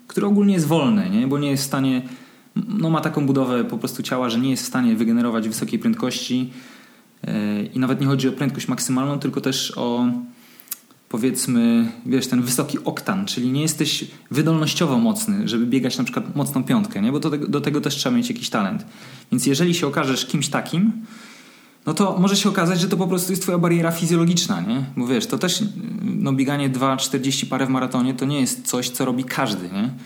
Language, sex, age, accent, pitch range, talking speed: Polish, male, 20-39, native, 130-200 Hz, 200 wpm